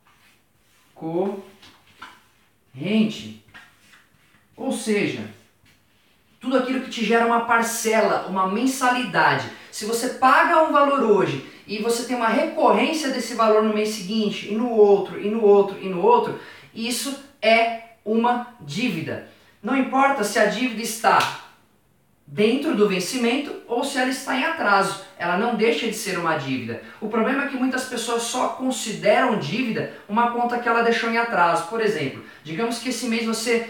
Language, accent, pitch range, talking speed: Portuguese, Brazilian, 195-245 Hz, 155 wpm